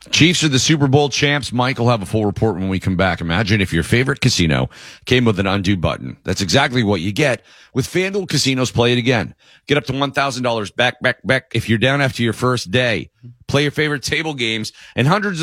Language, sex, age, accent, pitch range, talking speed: English, male, 40-59, American, 95-135 Hz, 225 wpm